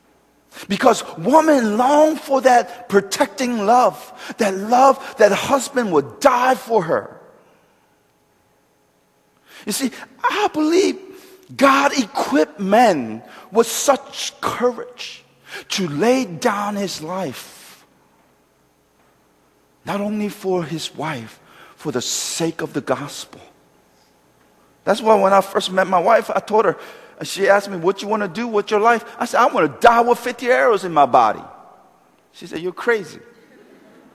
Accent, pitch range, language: American, 155-235 Hz, Korean